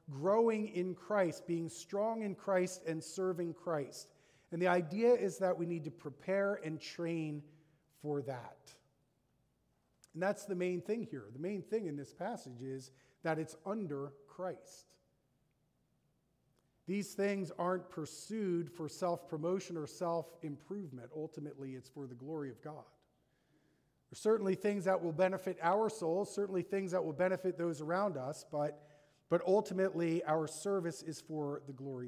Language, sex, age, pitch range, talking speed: English, male, 40-59, 155-195 Hz, 150 wpm